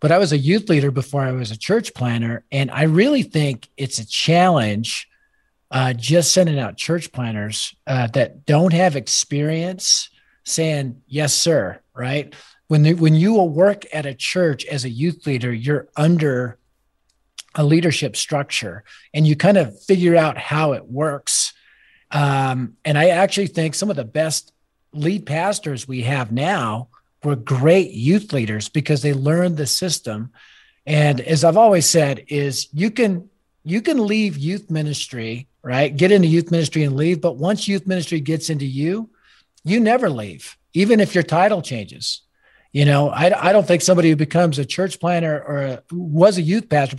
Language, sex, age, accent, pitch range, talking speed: English, male, 50-69, American, 140-180 Hz, 175 wpm